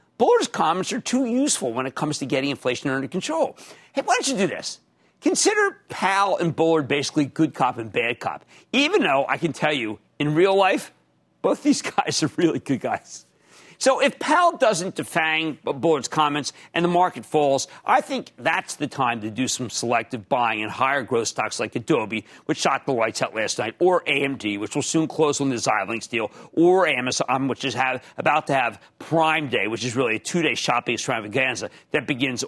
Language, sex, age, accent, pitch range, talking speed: English, male, 50-69, American, 140-225 Hz, 200 wpm